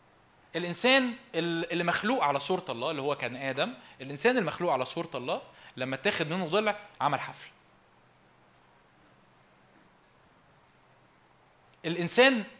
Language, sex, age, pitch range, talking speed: Arabic, male, 20-39, 155-225 Hz, 105 wpm